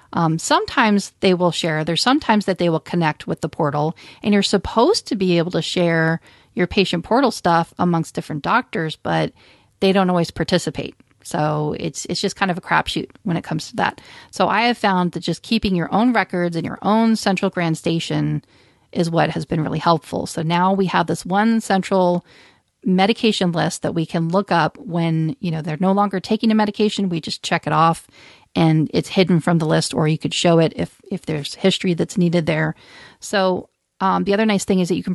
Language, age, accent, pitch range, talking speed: English, 40-59, American, 165-200 Hz, 215 wpm